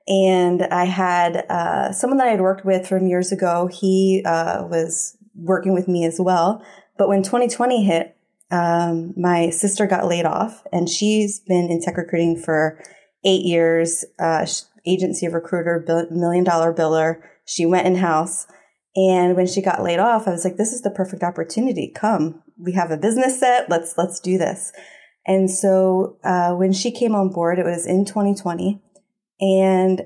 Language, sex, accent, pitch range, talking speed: English, female, American, 175-205 Hz, 175 wpm